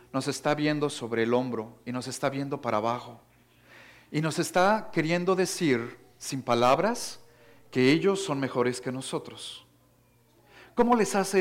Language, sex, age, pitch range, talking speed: English, male, 50-69, 130-180 Hz, 145 wpm